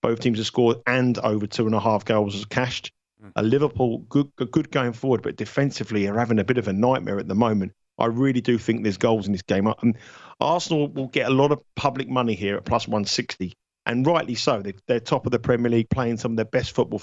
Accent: British